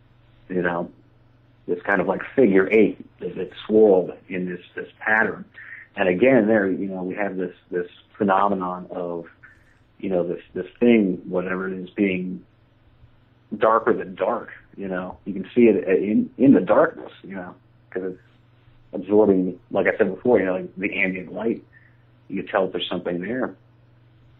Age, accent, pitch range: 50-69, American, 95-120 Hz